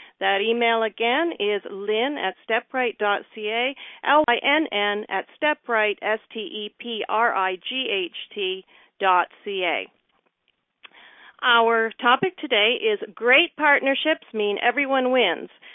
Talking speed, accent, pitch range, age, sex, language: 85 wpm, American, 200-270 Hz, 50-69, female, English